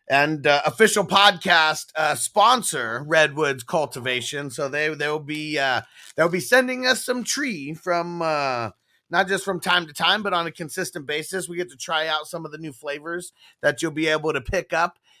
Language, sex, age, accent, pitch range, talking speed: English, male, 30-49, American, 135-180 Hz, 195 wpm